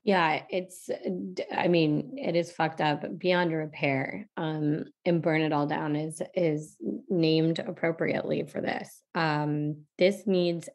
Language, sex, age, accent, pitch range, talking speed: English, female, 20-39, American, 155-190 Hz, 140 wpm